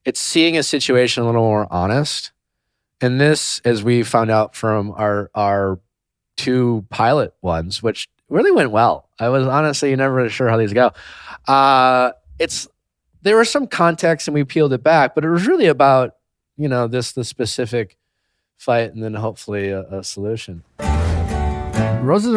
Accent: American